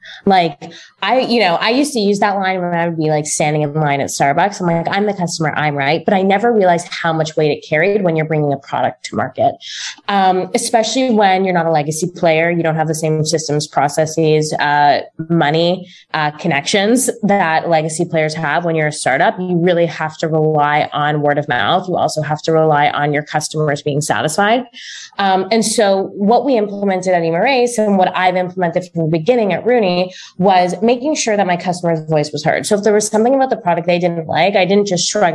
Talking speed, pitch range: 220 wpm, 155-195 Hz